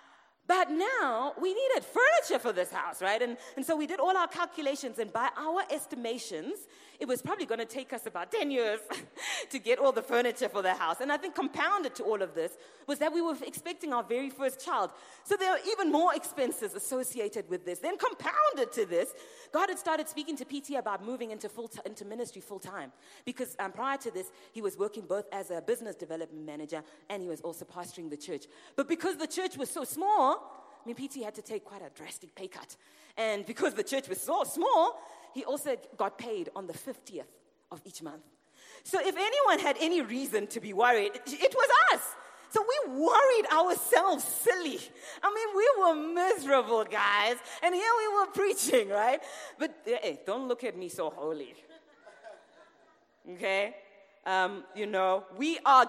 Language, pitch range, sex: English, 215-355 Hz, female